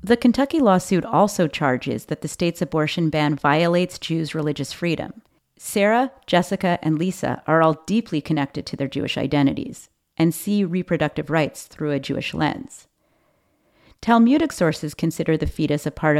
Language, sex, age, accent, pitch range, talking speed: English, female, 30-49, American, 145-180 Hz, 150 wpm